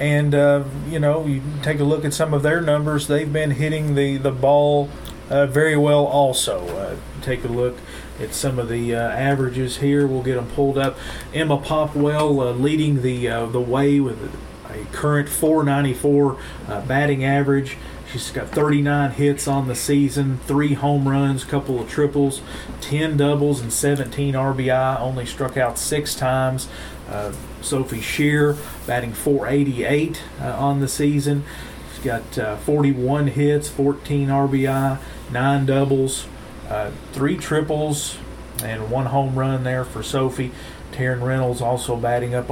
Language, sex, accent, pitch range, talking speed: English, male, American, 120-145 Hz, 155 wpm